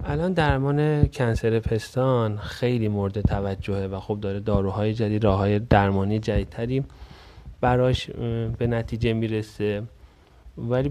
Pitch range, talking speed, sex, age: 100-120 Hz, 115 wpm, male, 30-49